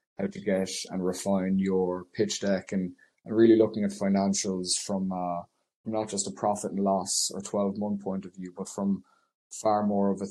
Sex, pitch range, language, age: male, 95-110 Hz, English, 20-39